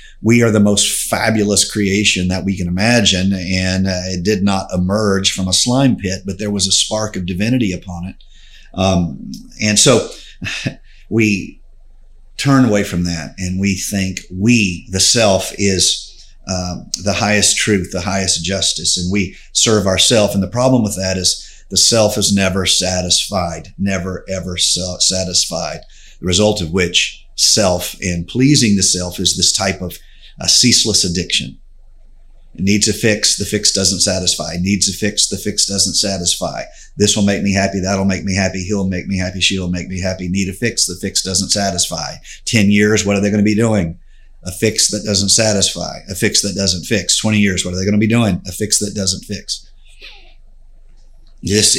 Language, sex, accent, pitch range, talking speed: English, male, American, 95-105 Hz, 180 wpm